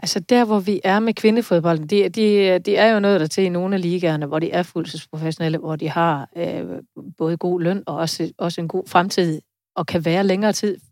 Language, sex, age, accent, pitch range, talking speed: Danish, female, 30-49, native, 165-205 Hz, 225 wpm